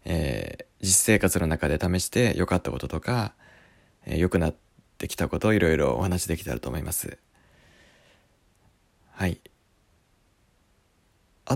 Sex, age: male, 20-39